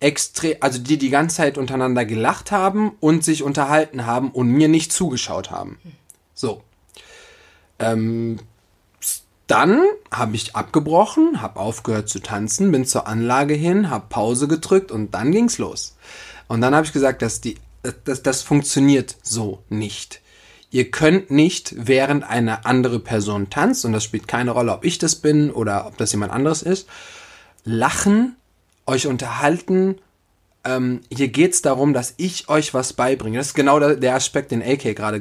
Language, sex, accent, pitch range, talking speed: German, male, German, 110-160 Hz, 160 wpm